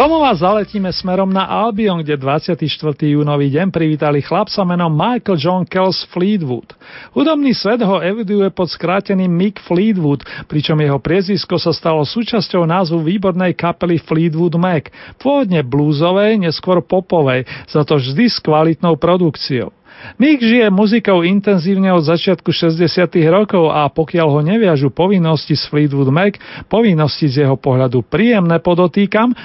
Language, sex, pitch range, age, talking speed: Slovak, male, 155-205 Hz, 40-59, 135 wpm